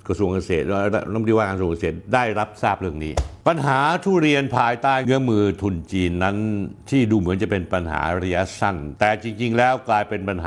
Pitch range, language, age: 95-120 Hz, Thai, 60-79